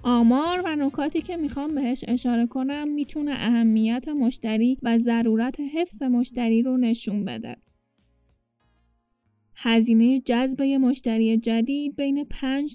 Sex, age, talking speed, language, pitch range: female, 10-29, 120 wpm, Persian, 230-265 Hz